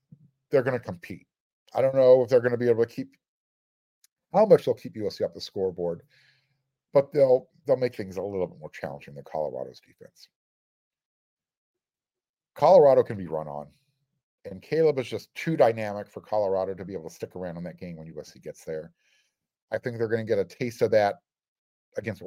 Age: 50-69